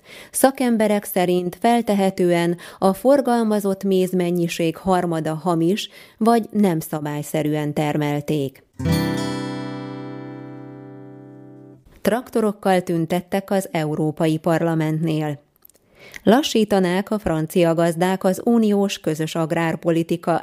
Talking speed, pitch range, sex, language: 75 wpm, 160-190 Hz, female, Hungarian